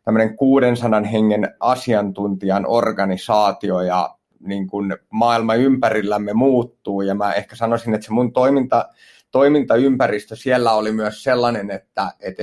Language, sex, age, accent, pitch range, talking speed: Finnish, male, 30-49, native, 100-115 Hz, 130 wpm